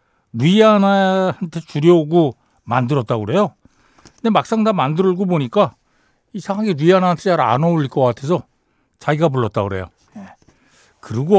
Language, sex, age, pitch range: Korean, male, 60-79, 125-195 Hz